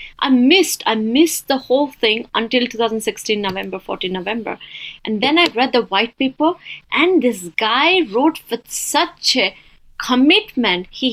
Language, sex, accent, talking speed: English, female, Indian, 150 wpm